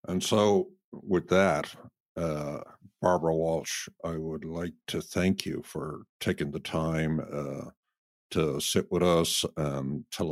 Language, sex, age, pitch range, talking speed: English, male, 60-79, 75-85 Hz, 140 wpm